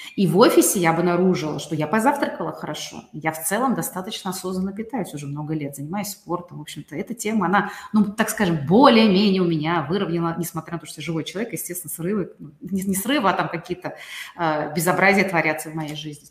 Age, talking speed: 30-49, 190 wpm